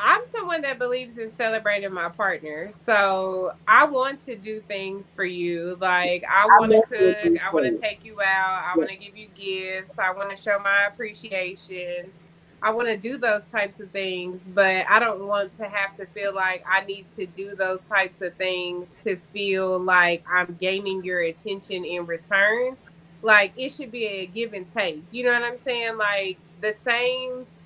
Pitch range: 185-220 Hz